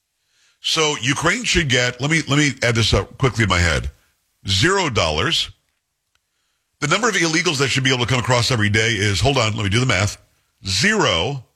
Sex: male